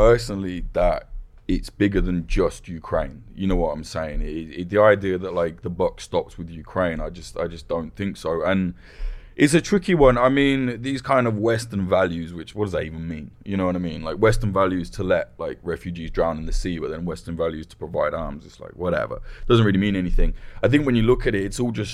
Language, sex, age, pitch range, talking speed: English, male, 20-39, 85-110 Hz, 245 wpm